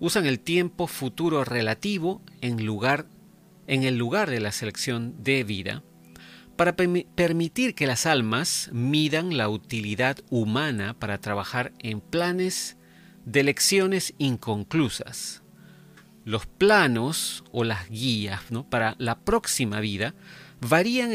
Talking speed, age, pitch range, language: 120 wpm, 40-59, 115-175 Hz, Spanish